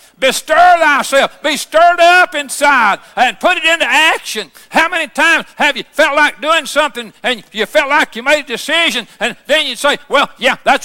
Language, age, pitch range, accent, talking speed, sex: English, 60-79, 275-340 Hz, American, 195 wpm, male